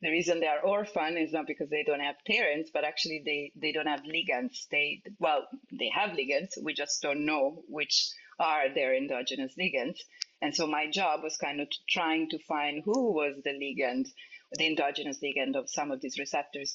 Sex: female